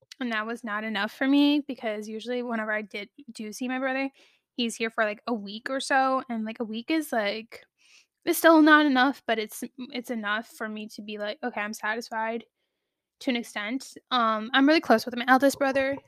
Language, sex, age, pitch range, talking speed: English, female, 10-29, 220-265 Hz, 215 wpm